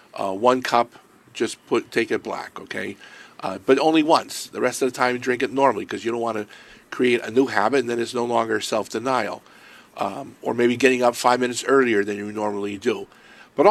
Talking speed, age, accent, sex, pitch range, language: 220 wpm, 50-69, American, male, 120-170 Hz, English